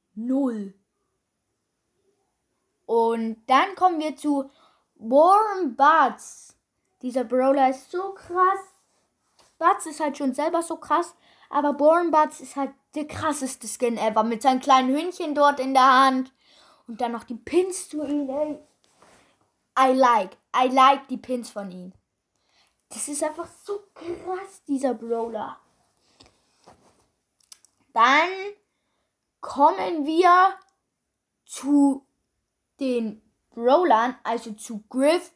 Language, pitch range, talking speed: German, 240-310 Hz, 115 wpm